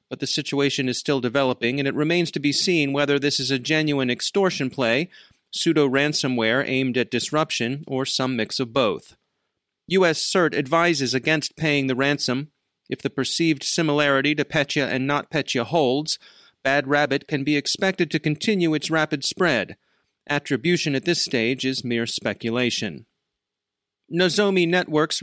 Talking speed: 150 wpm